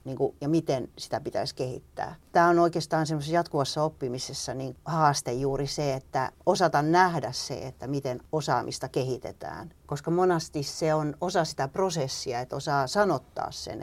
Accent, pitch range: native, 135-170 Hz